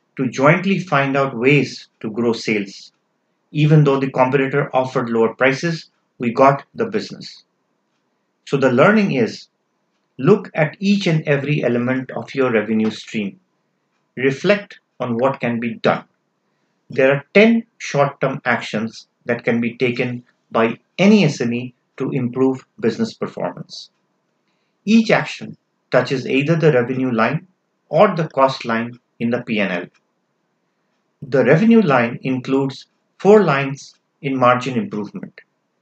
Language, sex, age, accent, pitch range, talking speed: English, male, 50-69, Indian, 125-165 Hz, 130 wpm